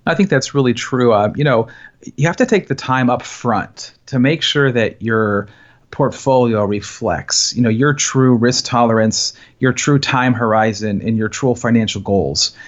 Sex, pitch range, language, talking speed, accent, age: male, 110-135 Hz, English, 180 wpm, American, 40-59